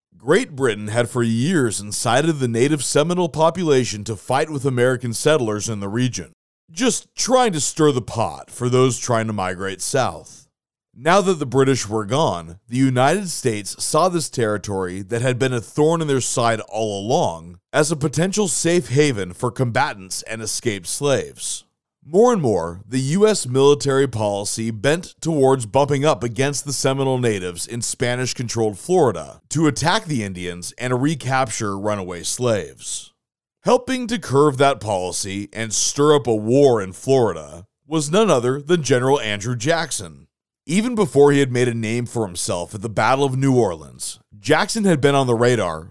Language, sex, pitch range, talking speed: English, male, 110-150 Hz, 165 wpm